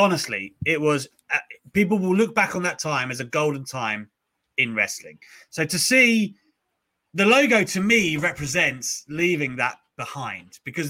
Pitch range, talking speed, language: 135-195 Hz, 160 wpm, English